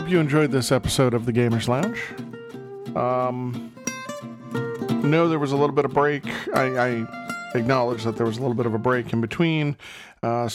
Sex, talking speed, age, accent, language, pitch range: male, 190 wpm, 40-59, American, English, 120-160 Hz